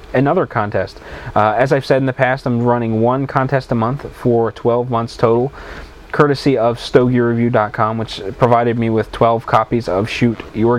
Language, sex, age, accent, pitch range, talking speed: English, male, 20-39, American, 115-140 Hz, 170 wpm